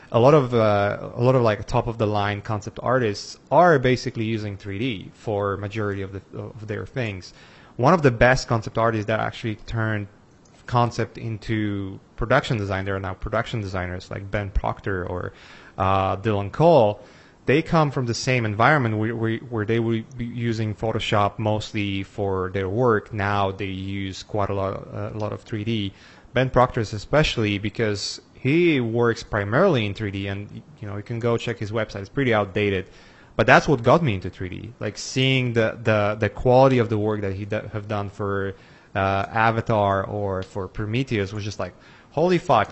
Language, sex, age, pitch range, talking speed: English, male, 30-49, 100-125 Hz, 185 wpm